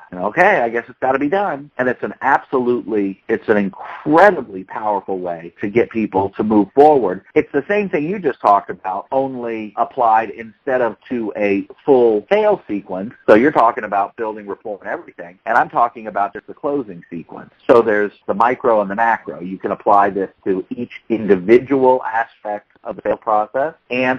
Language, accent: English, American